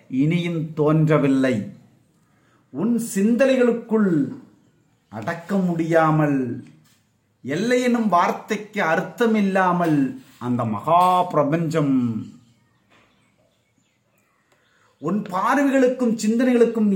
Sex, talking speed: male, 55 wpm